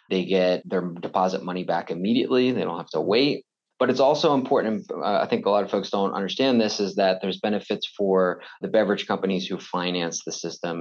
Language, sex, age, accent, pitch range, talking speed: English, male, 20-39, American, 85-100 Hz, 205 wpm